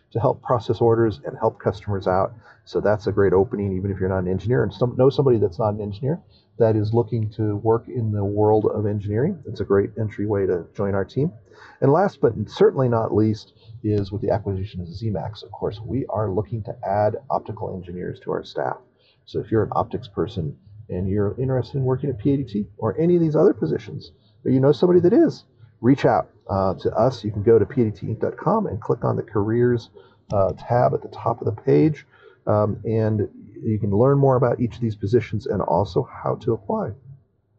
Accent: American